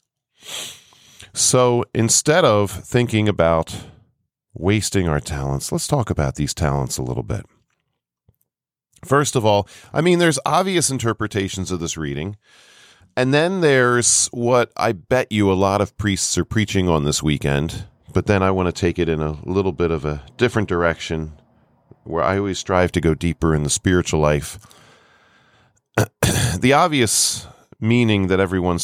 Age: 40-59